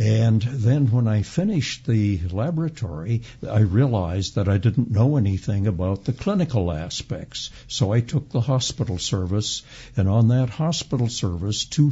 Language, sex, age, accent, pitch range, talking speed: English, male, 60-79, American, 100-130 Hz, 150 wpm